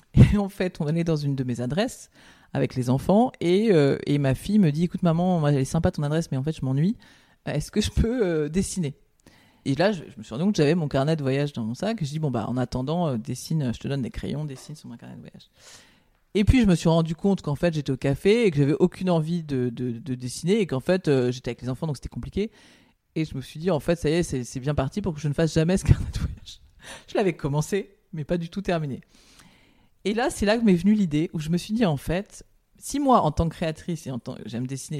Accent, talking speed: French, 285 wpm